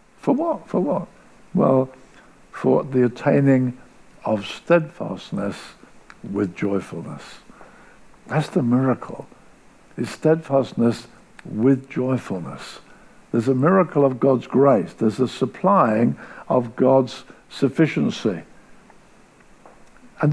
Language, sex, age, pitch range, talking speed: English, male, 60-79, 125-155 Hz, 95 wpm